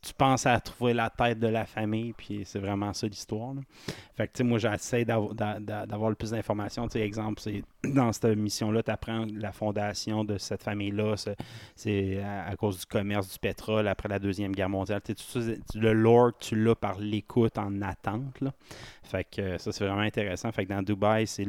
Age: 30-49